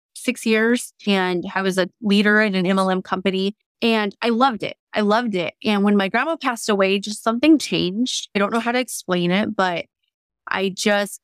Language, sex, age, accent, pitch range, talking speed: English, female, 20-39, American, 180-215 Hz, 200 wpm